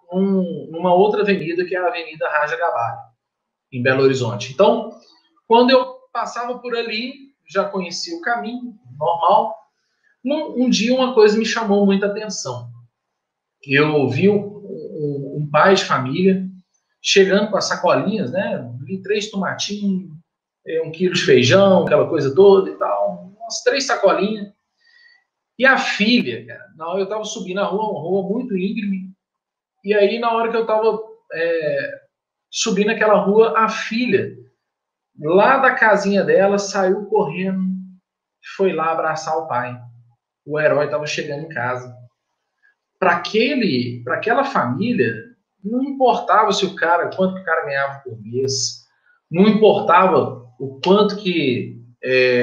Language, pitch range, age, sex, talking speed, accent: Portuguese, 155-220 Hz, 40-59, male, 145 wpm, Brazilian